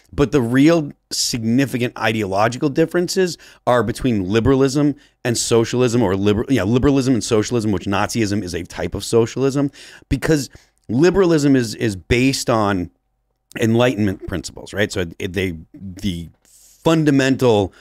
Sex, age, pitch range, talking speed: male, 30-49, 100-135 Hz, 130 wpm